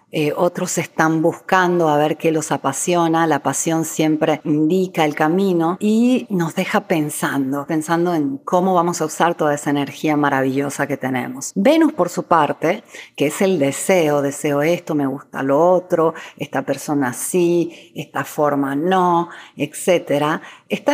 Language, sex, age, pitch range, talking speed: Spanish, female, 40-59, 155-190 Hz, 150 wpm